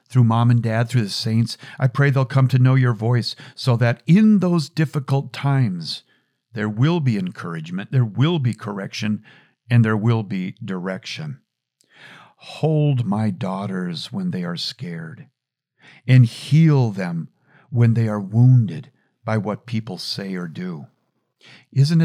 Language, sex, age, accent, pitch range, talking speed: English, male, 50-69, American, 115-145 Hz, 150 wpm